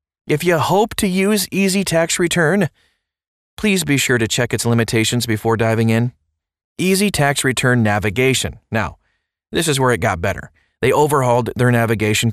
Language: English